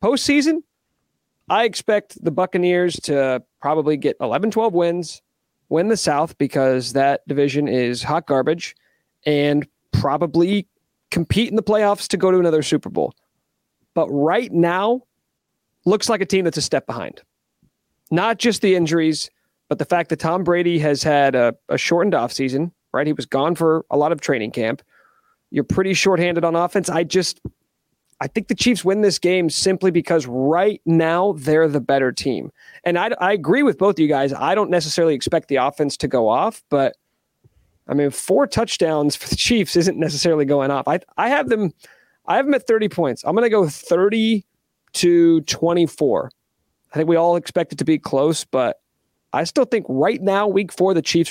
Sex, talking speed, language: male, 180 wpm, English